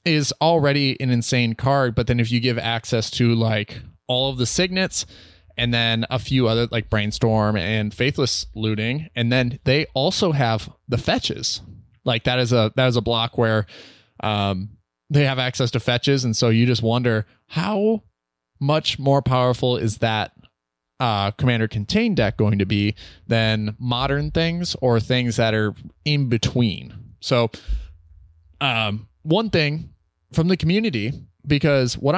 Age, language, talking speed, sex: 20-39, English, 160 wpm, male